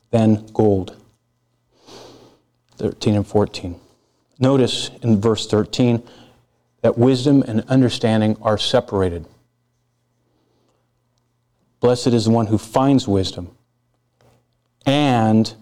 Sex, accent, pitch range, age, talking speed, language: male, American, 95-115 Hz, 40-59, 90 wpm, English